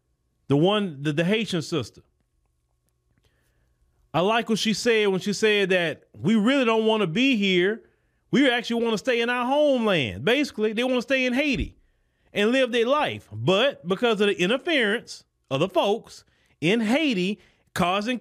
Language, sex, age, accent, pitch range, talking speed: English, male, 30-49, American, 155-230 Hz, 170 wpm